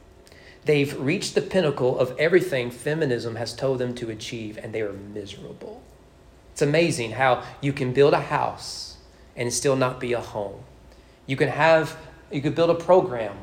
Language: English